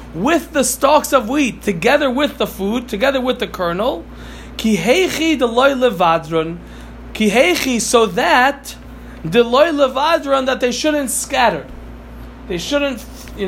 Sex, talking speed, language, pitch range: male, 120 wpm, Italian, 180-255 Hz